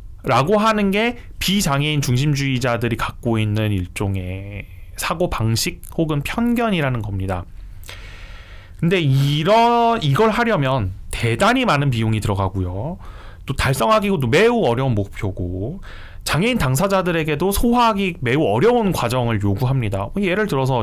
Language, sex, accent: Korean, male, native